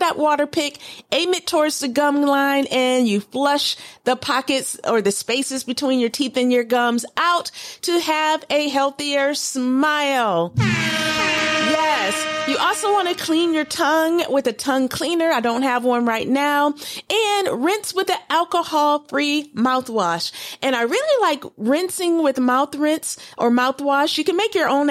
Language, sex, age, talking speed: English, female, 40-59, 165 wpm